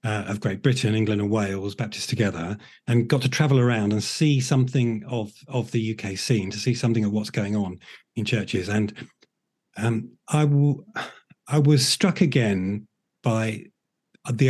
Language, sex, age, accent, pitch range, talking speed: English, male, 40-59, British, 110-140 Hz, 165 wpm